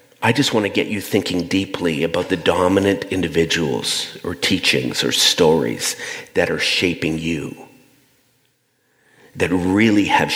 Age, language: 50-69, English